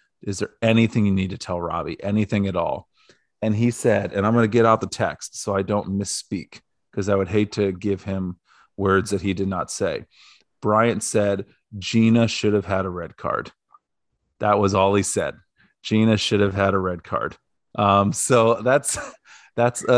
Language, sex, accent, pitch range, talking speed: English, male, American, 100-125 Hz, 190 wpm